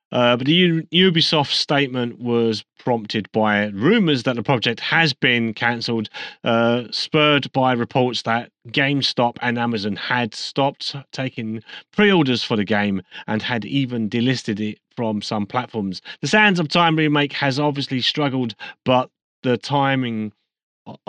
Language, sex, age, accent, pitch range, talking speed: English, male, 30-49, British, 115-145 Hz, 145 wpm